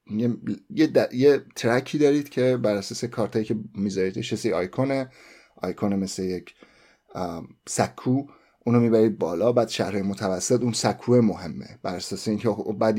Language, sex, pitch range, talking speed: Persian, male, 100-120 Hz, 150 wpm